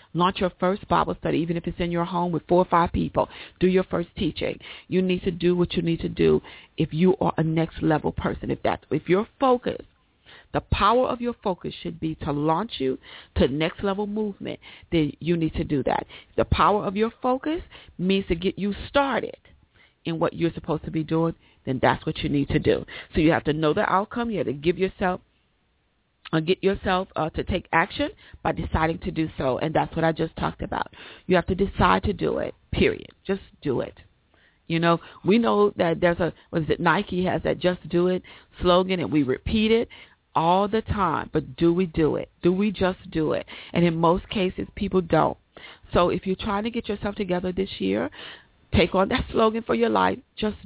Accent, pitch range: American, 165-205 Hz